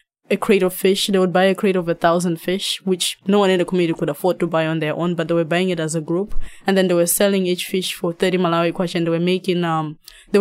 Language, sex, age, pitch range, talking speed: English, female, 20-39, 170-190 Hz, 295 wpm